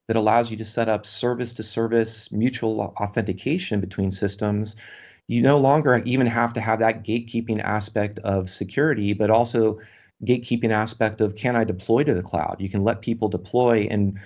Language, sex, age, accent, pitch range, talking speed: English, male, 30-49, American, 105-120 Hz, 175 wpm